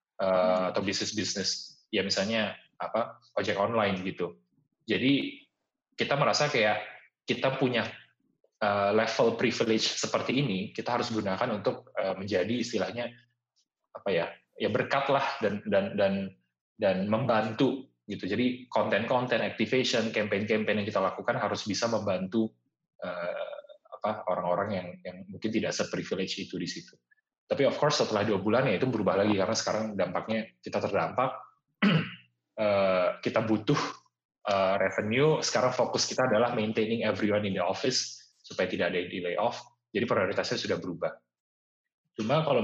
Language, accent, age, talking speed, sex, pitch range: Indonesian, native, 20-39, 140 wpm, male, 95-115 Hz